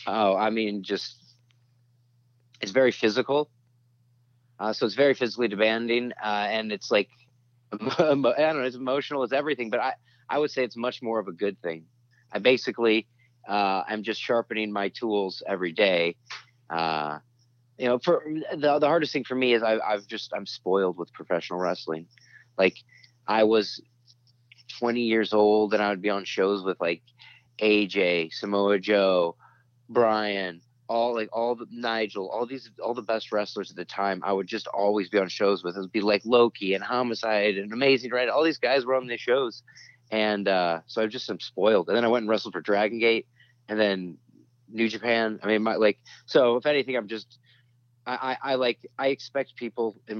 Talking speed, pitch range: 190 wpm, 105-120 Hz